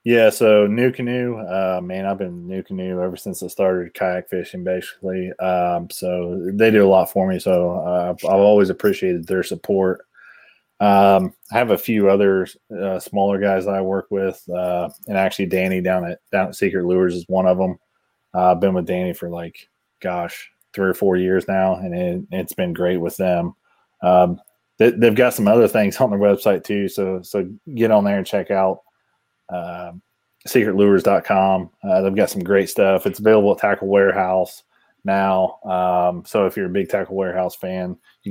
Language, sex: English, male